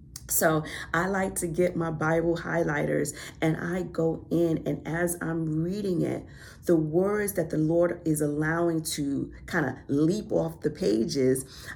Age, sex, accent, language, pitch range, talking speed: 40-59, female, American, English, 150-175 Hz, 160 wpm